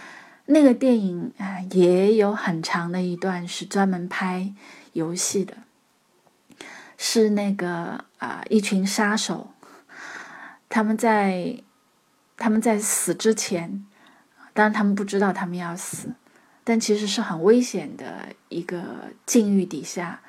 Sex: female